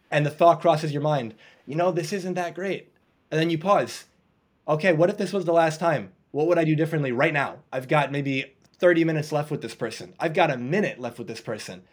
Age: 20-39